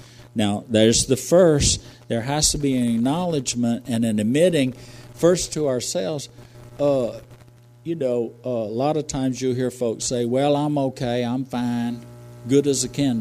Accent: American